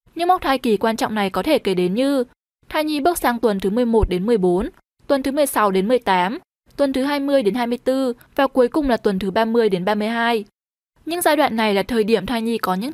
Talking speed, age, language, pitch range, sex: 235 wpm, 10-29, Vietnamese, 220-285 Hz, female